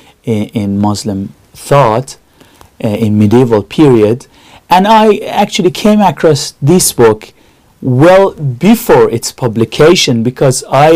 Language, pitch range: English, 115-170 Hz